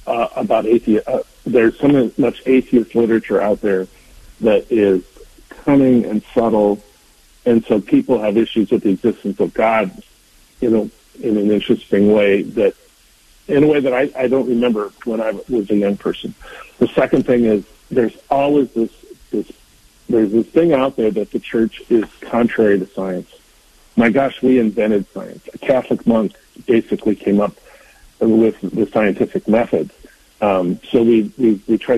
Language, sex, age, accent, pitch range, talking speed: English, male, 50-69, American, 105-125 Hz, 165 wpm